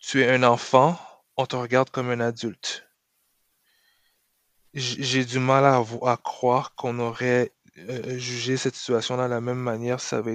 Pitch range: 125-150 Hz